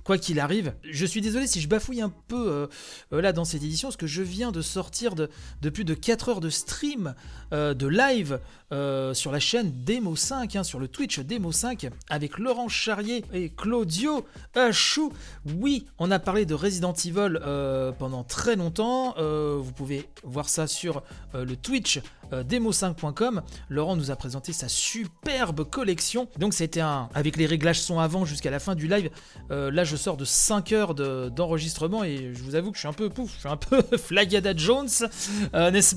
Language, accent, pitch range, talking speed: French, French, 150-215 Hz, 200 wpm